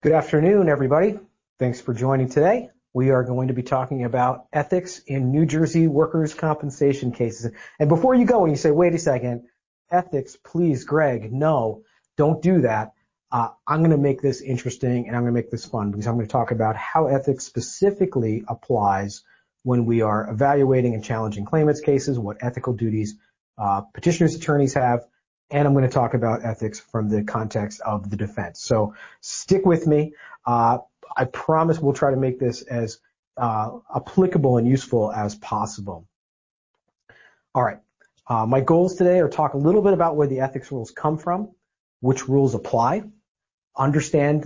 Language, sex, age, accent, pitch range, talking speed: English, male, 40-59, American, 120-155 Hz, 175 wpm